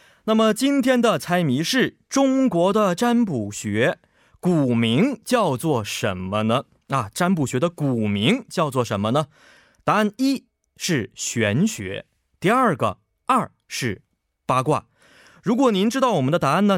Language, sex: Korean, male